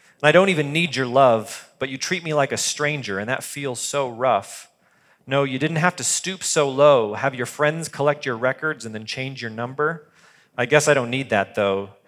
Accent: American